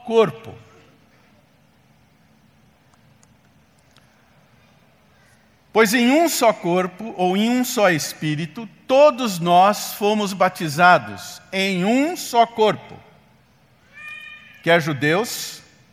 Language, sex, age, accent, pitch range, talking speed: Portuguese, male, 50-69, Brazilian, 165-230 Hz, 80 wpm